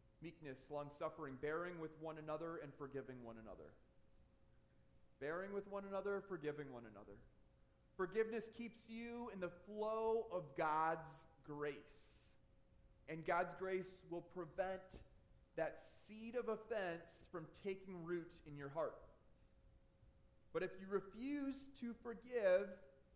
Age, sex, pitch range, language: 30-49, male, 135-190 Hz, English